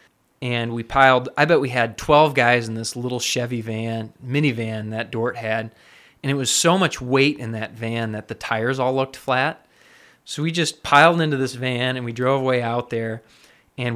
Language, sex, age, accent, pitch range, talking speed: English, male, 20-39, American, 120-145 Hz, 200 wpm